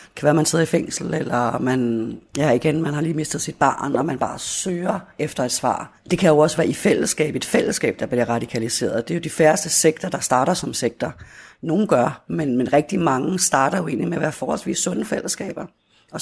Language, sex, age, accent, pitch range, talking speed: Danish, female, 30-49, native, 140-175 Hz, 230 wpm